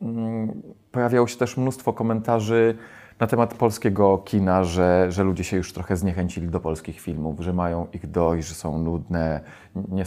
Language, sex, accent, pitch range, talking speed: Polish, male, native, 90-115 Hz, 160 wpm